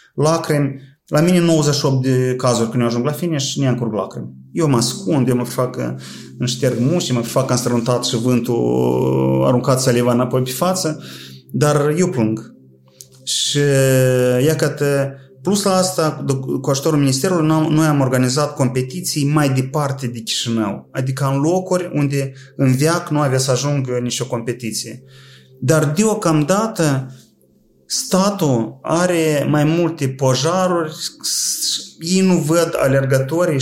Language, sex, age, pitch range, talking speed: Romanian, male, 30-49, 125-155 Hz, 135 wpm